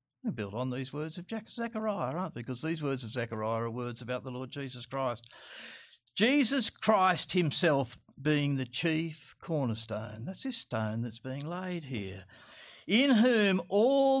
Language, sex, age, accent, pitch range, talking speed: English, male, 50-69, Australian, 125-180 Hz, 155 wpm